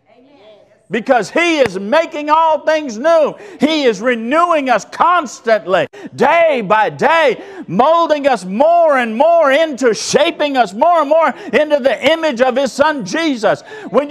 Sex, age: male, 50-69